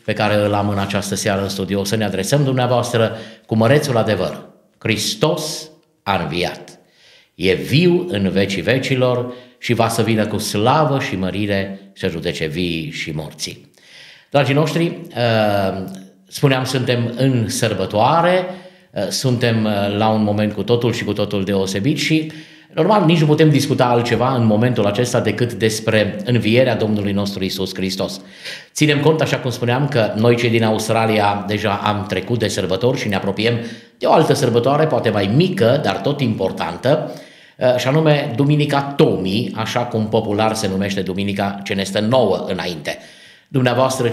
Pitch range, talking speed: 100-135 Hz, 155 wpm